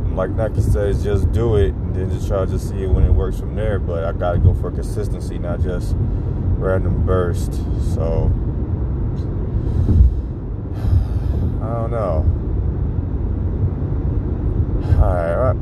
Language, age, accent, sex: English, 30-49, American, male